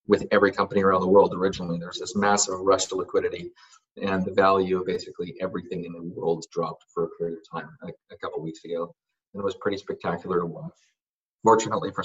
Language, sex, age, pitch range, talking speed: English, male, 30-49, 85-100 Hz, 210 wpm